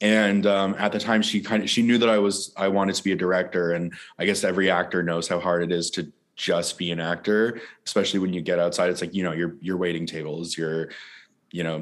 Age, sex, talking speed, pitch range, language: 20-39, male, 255 wpm, 85-105 Hz, English